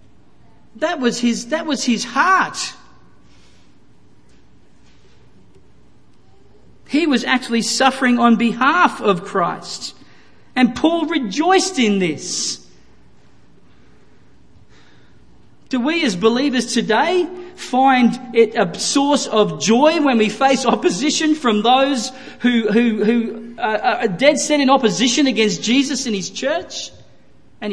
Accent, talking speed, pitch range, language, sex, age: Australian, 110 wpm, 195-255 Hz, English, male, 40-59